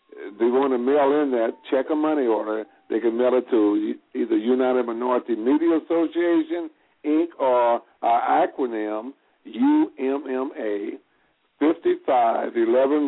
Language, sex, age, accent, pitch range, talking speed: English, male, 60-79, American, 120-165 Hz, 120 wpm